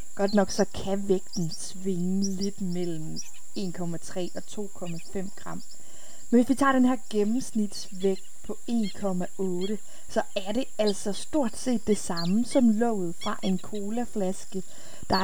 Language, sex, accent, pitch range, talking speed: Danish, female, native, 185-220 Hz, 140 wpm